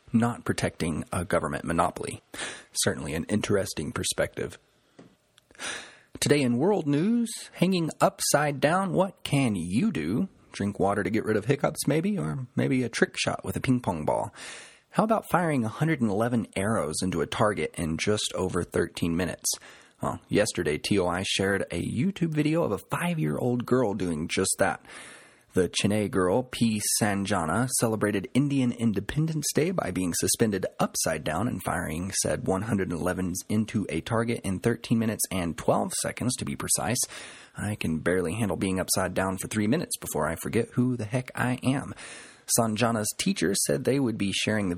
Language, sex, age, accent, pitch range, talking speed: English, male, 30-49, American, 100-135 Hz, 160 wpm